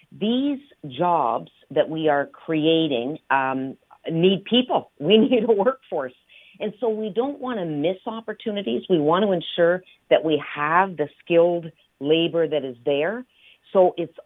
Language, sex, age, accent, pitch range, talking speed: English, female, 50-69, American, 155-205 Hz, 150 wpm